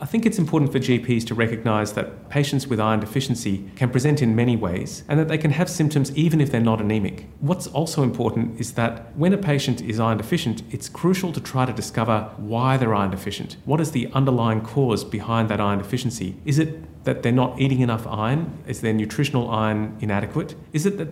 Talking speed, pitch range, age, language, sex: 215 wpm, 105-135 Hz, 30-49, English, male